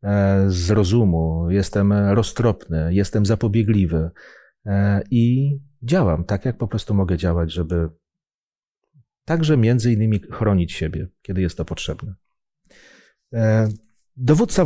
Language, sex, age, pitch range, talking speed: Polish, male, 40-59, 90-115 Hz, 100 wpm